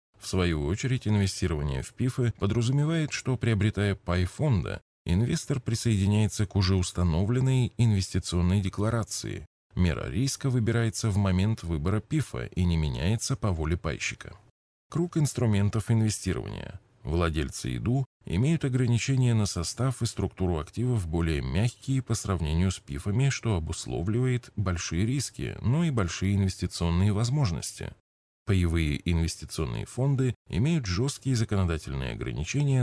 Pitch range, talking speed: 85-120 Hz, 120 wpm